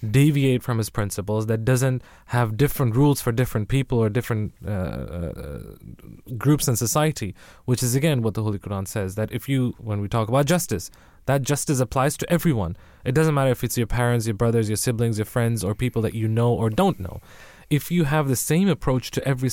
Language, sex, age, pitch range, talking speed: English, male, 20-39, 110-140 Hz, 210 wpm